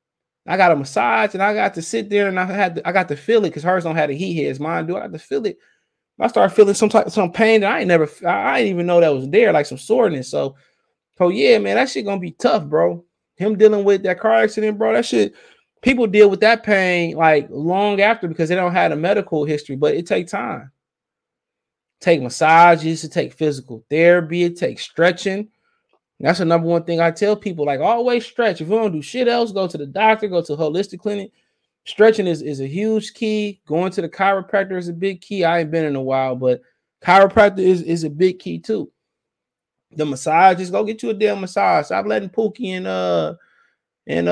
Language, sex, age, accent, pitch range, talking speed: English, male, 20-39, American, 160-210 Hz, 230 wpm